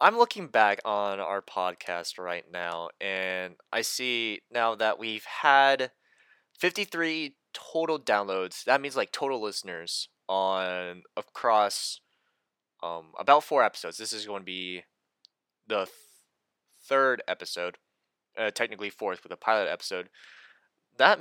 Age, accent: 20-39, American